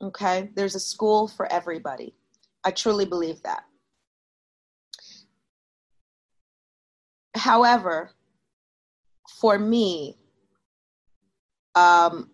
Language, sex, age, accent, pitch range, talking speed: English, female, 30-49, American, 160-200 Hz, 70 wpm